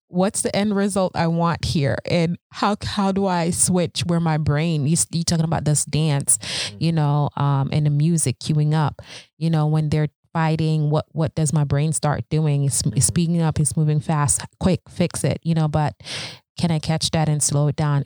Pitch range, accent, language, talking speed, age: 150-175 Hz, American, English, 205 wpm, 20-39